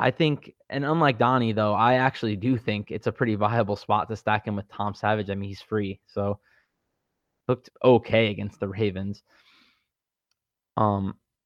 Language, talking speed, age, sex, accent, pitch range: English, 170 wpm, 20-39, male, American, 105-125 Hz